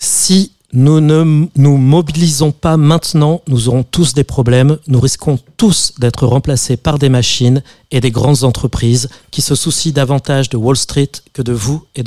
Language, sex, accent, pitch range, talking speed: French, male, French, 125-155 Hz, 175 wpm